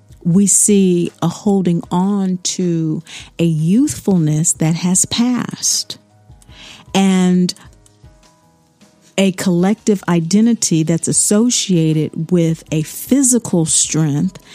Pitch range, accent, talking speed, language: 165-200 Hz, American, 85 wpm, English